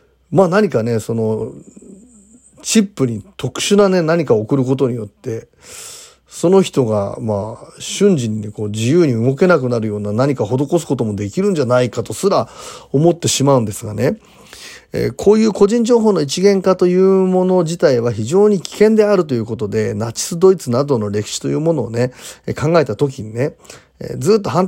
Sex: male